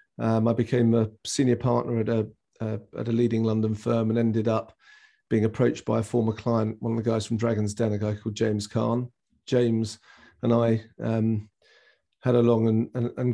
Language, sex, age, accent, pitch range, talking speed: English, male, 40-59, British, 110-125 Hz, 205 wpm